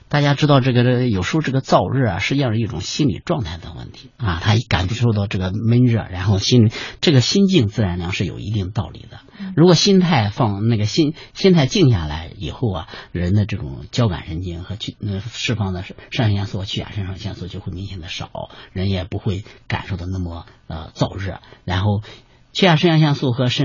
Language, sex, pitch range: Chinese, male, 100-130 Hz